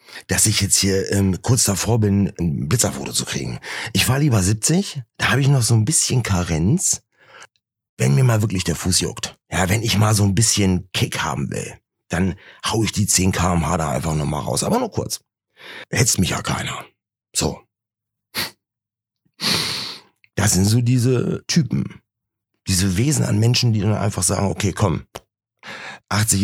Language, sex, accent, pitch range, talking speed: German, male, German, 85-115 Hz, 170 wpm